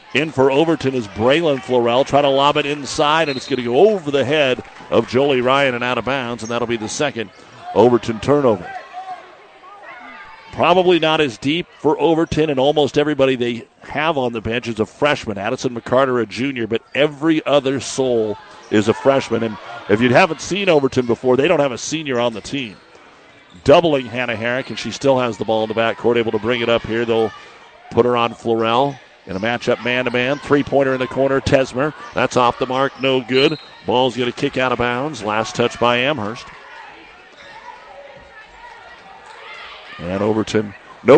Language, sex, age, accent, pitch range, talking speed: English, male, 50-69, American, 115-140 Hz, 185 wpm